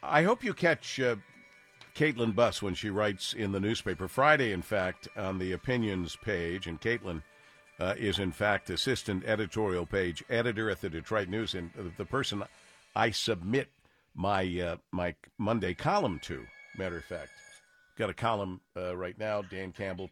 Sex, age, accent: male, 50-69, American